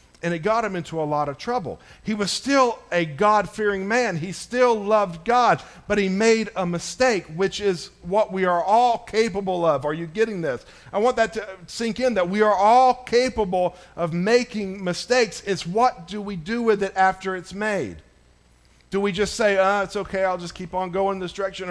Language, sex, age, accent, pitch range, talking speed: English, male, 50-69, American, 145-205 Hz, 205 wpm